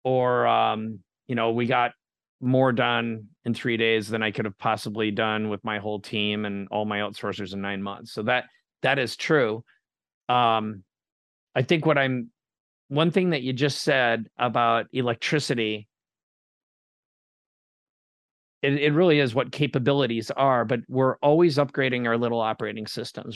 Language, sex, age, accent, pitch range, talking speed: English, male, 40-59, American, 115-145 Hz, 155 wpm